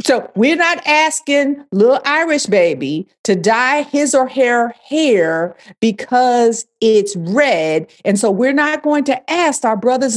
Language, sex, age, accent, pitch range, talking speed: English, female, 50-69, American, 200-280 Hz, 150 wpm